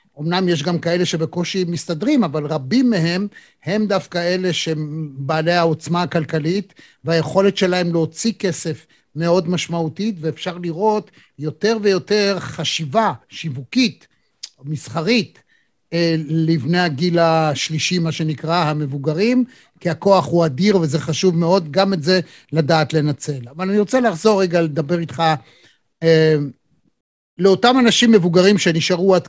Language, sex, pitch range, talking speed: Hebrew, male, 160-205 Hz, 120 wpm